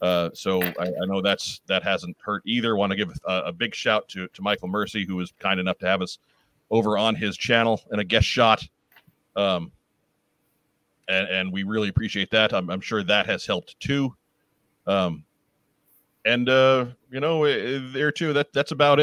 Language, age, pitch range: English, 40-59, 95-125 Hz